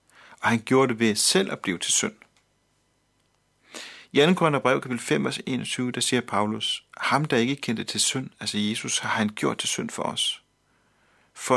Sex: male